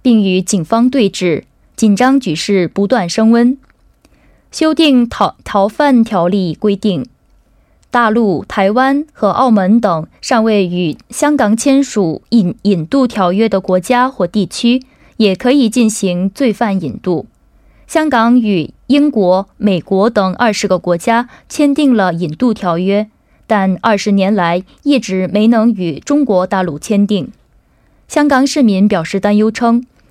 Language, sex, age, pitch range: Korean, female, 20-39, 190-250 Hz